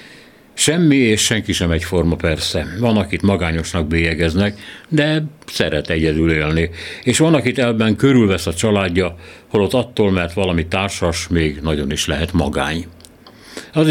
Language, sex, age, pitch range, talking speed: Hungarian, male, 60-79, 85-110 Hz, 140 wpm